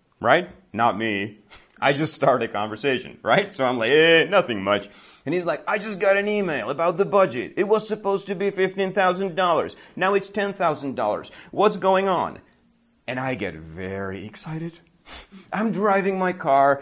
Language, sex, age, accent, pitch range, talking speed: Czech, male, 40-59, American, 110-170 Hz, 170 wpm